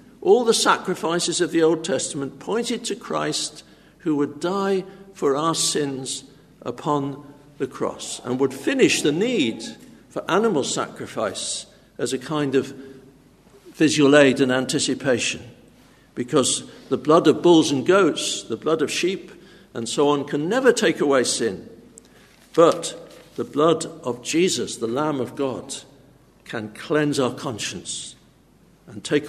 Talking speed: 140 wpm